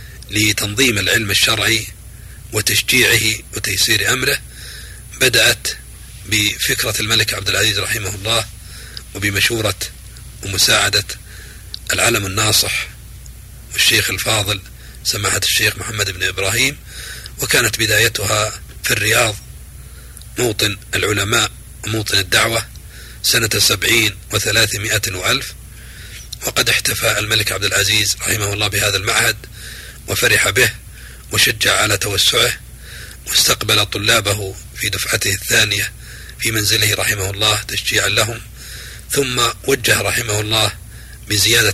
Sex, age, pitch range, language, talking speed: male, 40-59, 100-110 Hz, Arabic, 95 wpm